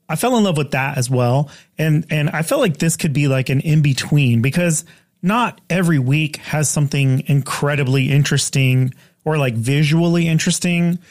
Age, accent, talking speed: 30-49, American, 165 wpm